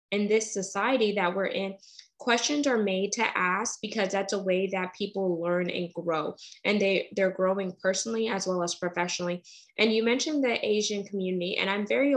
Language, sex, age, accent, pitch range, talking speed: English, female, 10-29, American, 185-215 Hz, 185 wpm